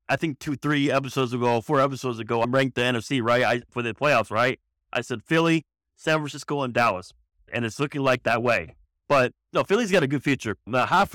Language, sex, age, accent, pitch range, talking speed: English, male, 30-49, American, 100-140 Hz, 220 wpm